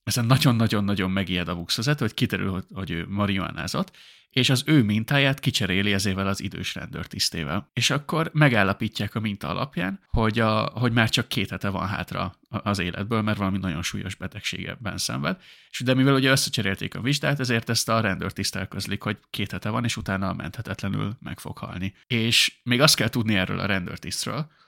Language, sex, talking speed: Hungarian, male, 175 wpm